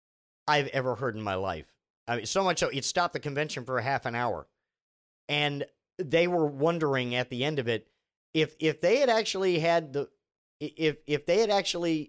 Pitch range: 125-175 Hz